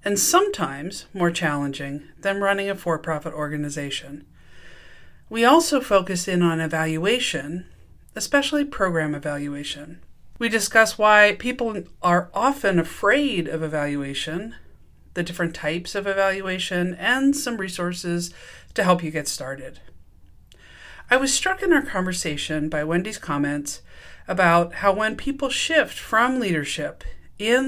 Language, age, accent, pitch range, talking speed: English, 40-59, American, 155-220 Hz, 125 wpm